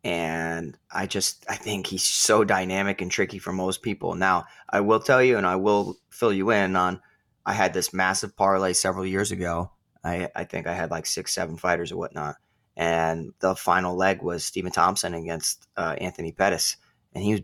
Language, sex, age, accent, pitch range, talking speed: English, male, 20-39, American, 90-105 Hz, 200 wpm